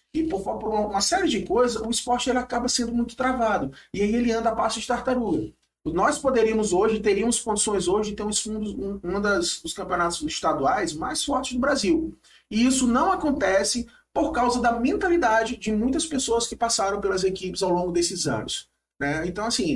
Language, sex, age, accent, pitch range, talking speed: Portuguese, male, 20-39, Brazilian, 185-245 Hz, 190 wpm